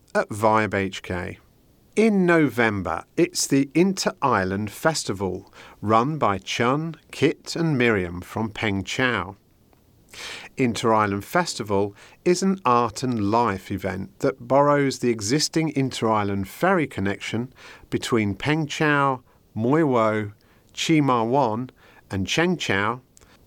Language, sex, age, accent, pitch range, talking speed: English, male, 50-69, British, 100-140 Hz, 115 wpm